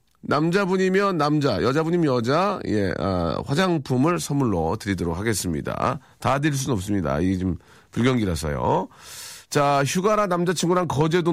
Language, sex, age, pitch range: Korean, male, 40-59, 110-170 Hz